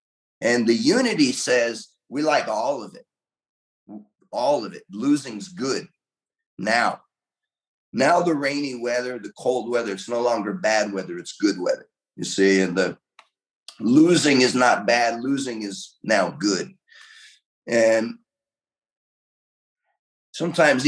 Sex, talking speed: male, 125 wpm